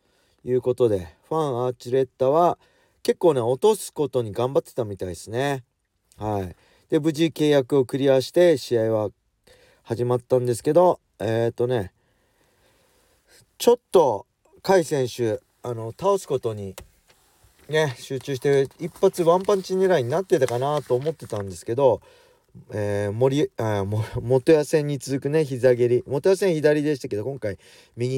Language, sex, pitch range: Japanese, male, 110-155 Hz